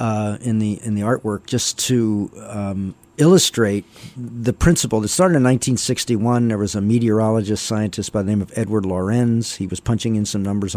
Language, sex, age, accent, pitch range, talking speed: English, male, 50-69, American, 105-125 Hz, 185 wpm